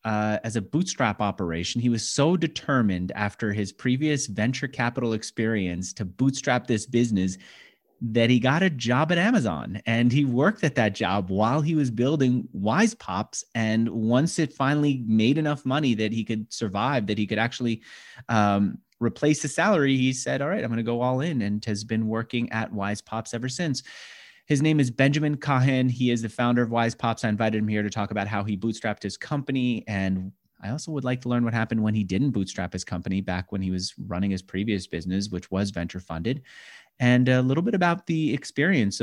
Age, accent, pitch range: 30-49, American, 105-135 Hz